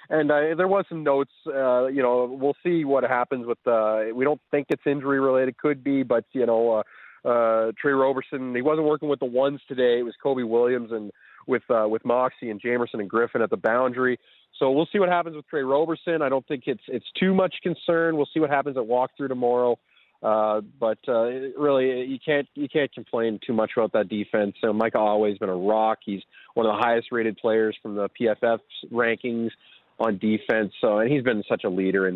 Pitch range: 105-140 Hz